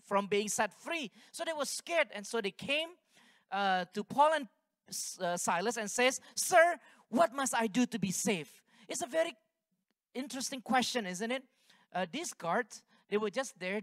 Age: 40-59